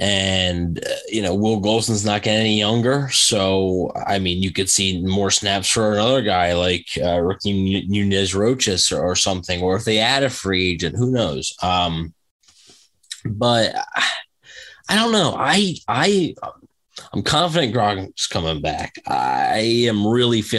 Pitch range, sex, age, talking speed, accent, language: 90-110 Hz, male, 20-39, 165 wpm, American, English